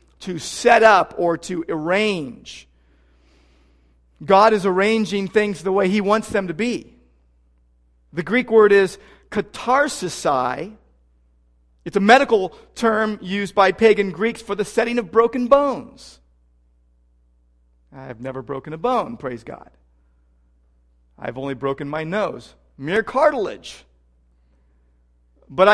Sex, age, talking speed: male, 40-59, 125 wpm